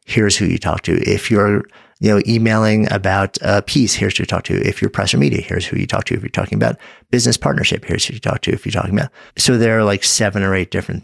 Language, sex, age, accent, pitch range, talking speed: English, male, 50-69, American, 90-115 Hz, 275 wpm